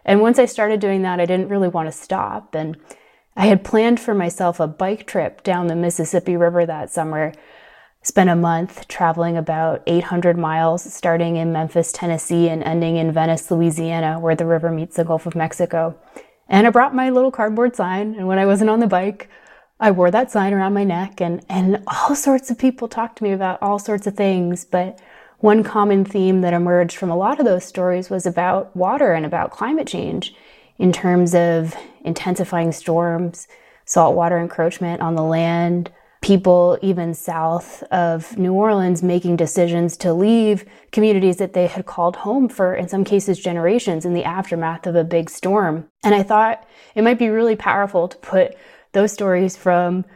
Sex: female